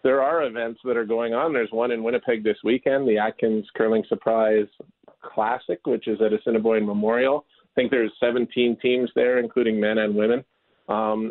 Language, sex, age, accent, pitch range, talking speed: English, male, 50-69, American, 110-125 Hz, 180 wpm